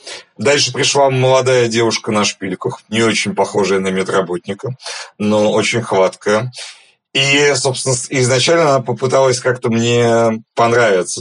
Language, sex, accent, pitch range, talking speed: Russian, male, native, 120-160 Hz, 120 wpm